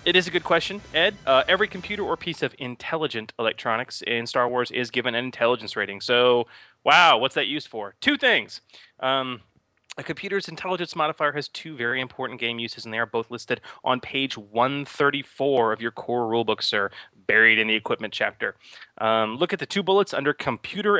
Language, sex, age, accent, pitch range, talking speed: English, male, 30-49, American, 115-170 Hz, 190 wpm